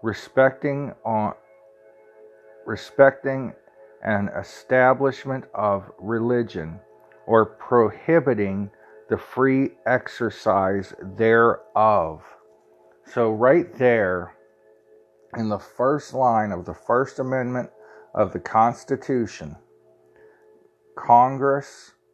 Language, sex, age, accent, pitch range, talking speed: English, male, 50-69, American, 105-130 Hz, 75 wpm